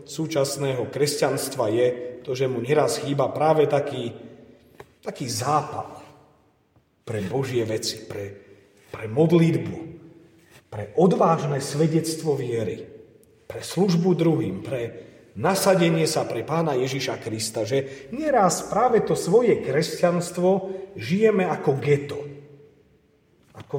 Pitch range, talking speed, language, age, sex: 135-170 Hz, 105 wpm, Slovak, 40-59, male